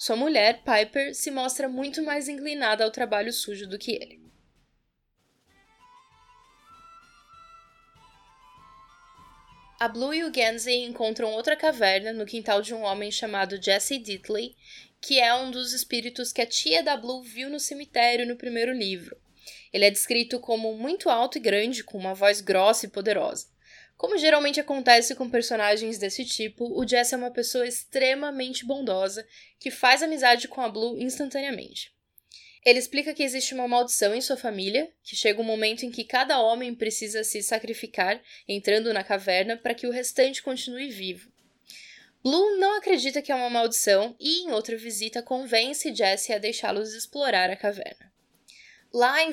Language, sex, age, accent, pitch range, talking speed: English, female, 10-29, Brazilian, 220-270 Hz, 160 wpm